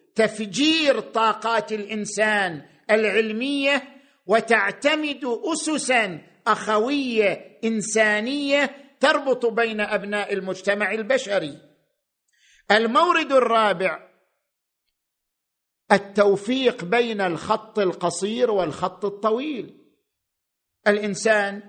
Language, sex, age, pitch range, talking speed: Arabic, male, 50-69, 205-265 Hz, 60 wpm